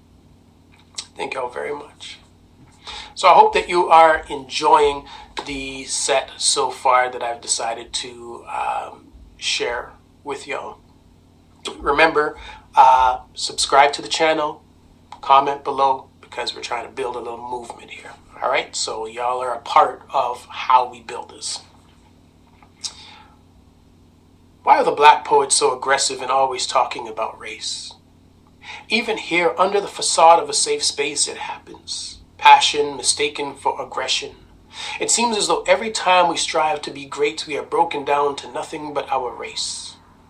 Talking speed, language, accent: 145 wpm, English, American